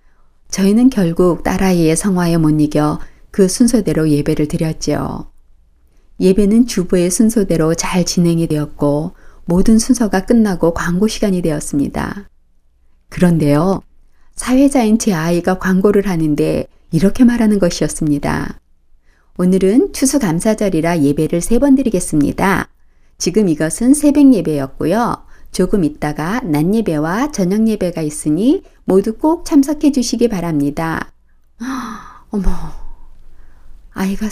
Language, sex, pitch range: Korean, female, 155-220 Hz